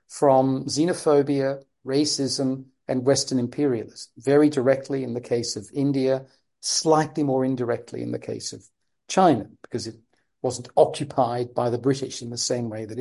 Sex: male